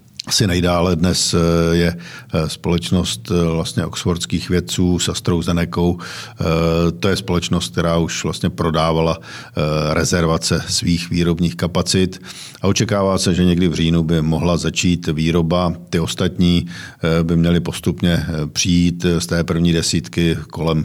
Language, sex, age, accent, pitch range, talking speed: Czech, male, 50-69, native, 80-85 Hz, 125 wpm